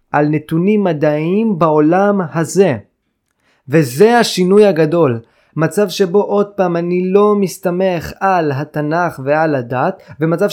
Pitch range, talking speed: 160-215 Hz, 115 wpm